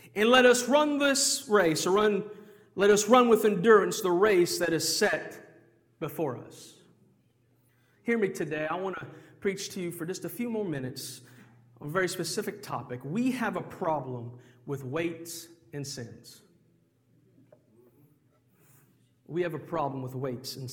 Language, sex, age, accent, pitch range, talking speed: English, male, 40-59, American, 145-220 Hz, 160 wpm